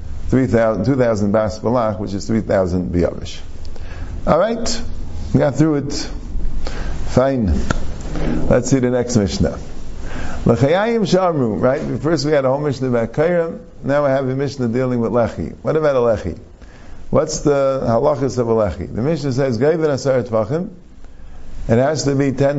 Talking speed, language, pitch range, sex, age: 145 wpm, English, 90-135 Hz, male, 50-69